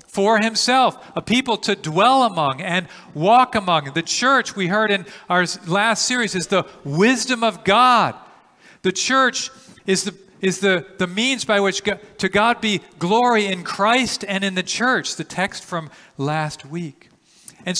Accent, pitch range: American, 150-220 Hz